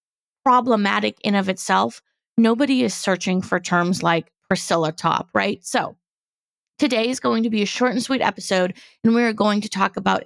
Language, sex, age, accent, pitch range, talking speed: English, female, 20-39, American, 185-230 Hz, 175 wpm